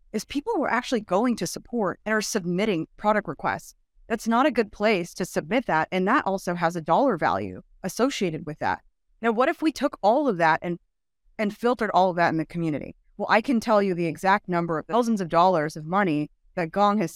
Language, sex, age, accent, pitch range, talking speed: English, female, 30-49, American, 170-225 Hz, 225 wpm